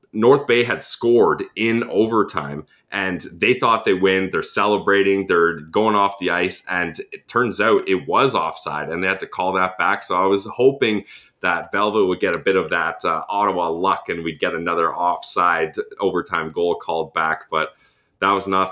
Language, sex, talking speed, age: English, male, 190 wpm, 30-49